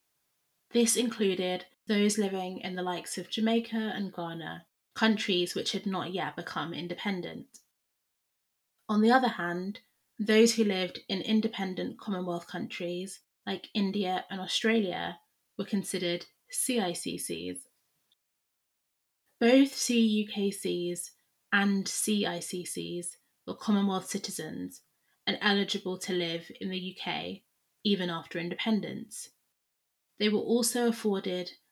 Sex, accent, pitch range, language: female, British, 180-215 Hz, English